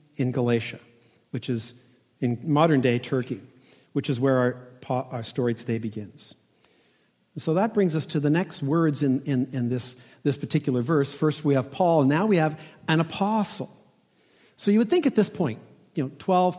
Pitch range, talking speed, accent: 130-185 Hz, 185 wpm, American